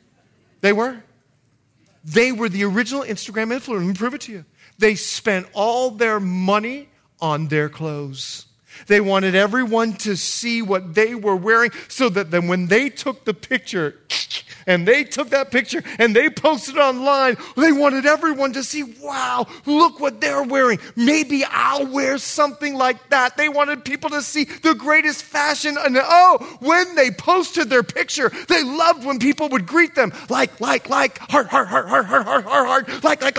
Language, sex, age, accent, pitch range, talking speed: English, male, 40-59, American, 210-295 Hz, 180 wpm